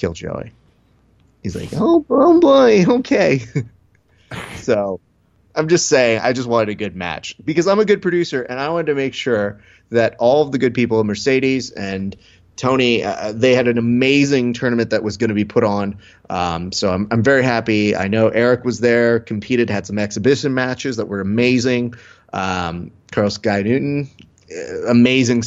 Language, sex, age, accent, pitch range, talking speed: English, male, 30-49, American, 95-125 Hz, 175 wpm